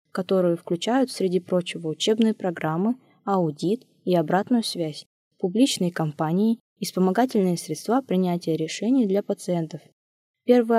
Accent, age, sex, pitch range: native, 20-39, female, 170-220 Hz